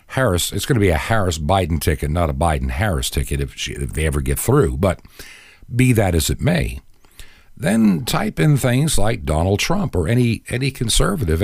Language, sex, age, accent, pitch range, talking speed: English, male, 50-69, American, 90-130 Hz, 190 wpm